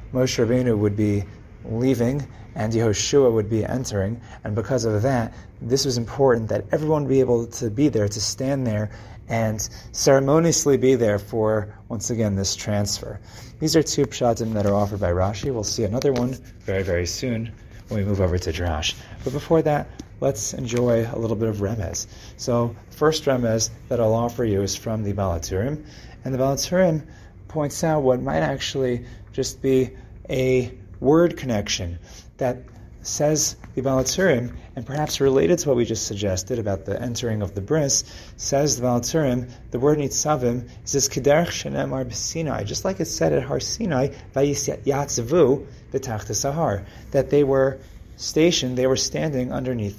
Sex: male